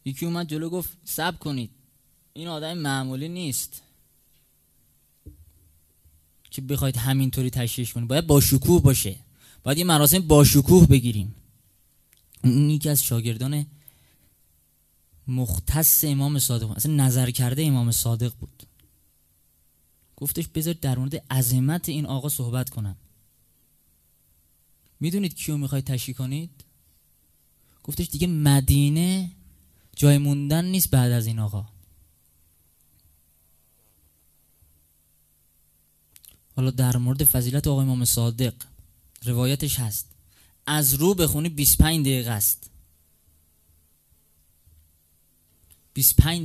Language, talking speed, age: Persian, 100 wpm, 20-39